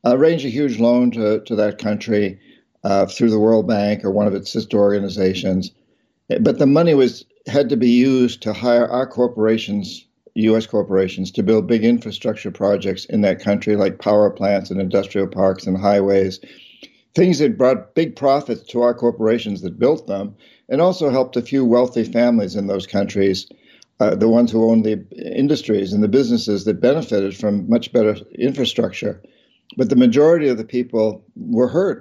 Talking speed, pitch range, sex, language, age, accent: 180 wpm, 105-125 Hz, male, English, 50-69, American